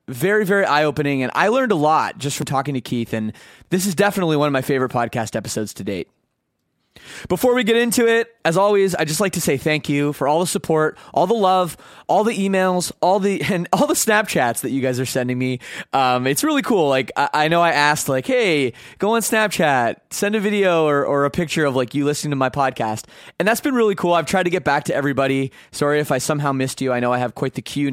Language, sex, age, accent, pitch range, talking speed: English, male, 20-39, American, 130-180 Hz, 245 wpm